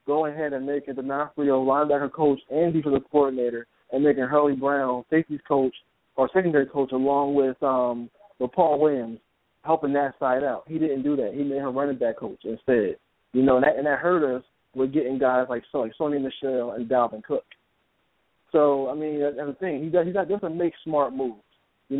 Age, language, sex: 20-39, English, male